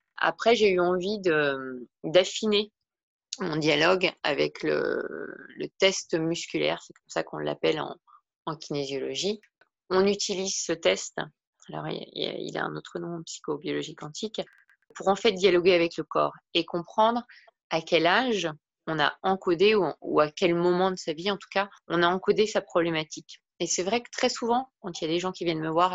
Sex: female